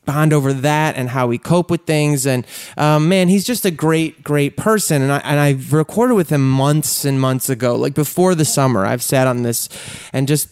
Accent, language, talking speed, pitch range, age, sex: American, English, 220 wpm, 140-180 Hz, 30-49, male